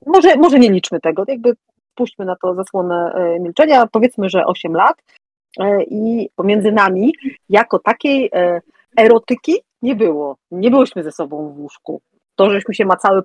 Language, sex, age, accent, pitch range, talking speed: Polish, female, 40-59, native, 175-225 Hz, 150 wpm